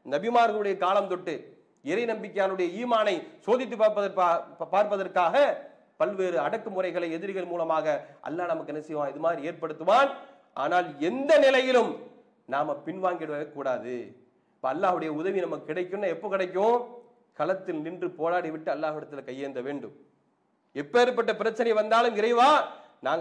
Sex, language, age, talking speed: male, English, 40-59, 110 wpm